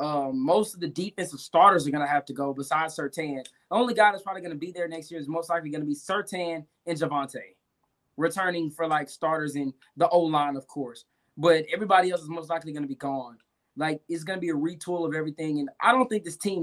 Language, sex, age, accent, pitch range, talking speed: English, male, 20-39, American, 150-185 Hz, 245 wpm